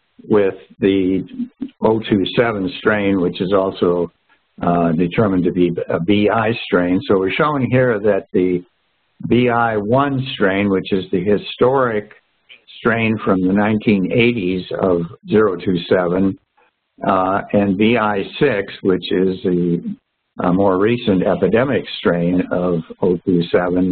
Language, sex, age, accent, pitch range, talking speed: English, male, 60-79, American, 90-110 Hz, 110 wpm